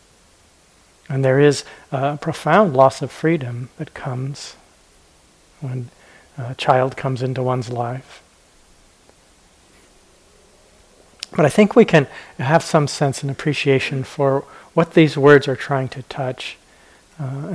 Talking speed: 125 wpm